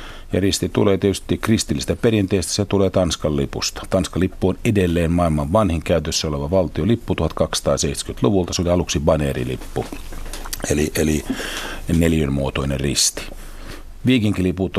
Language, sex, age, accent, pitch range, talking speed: Finnish, male, 50-69, native, 75-95 Hz, 125 wpm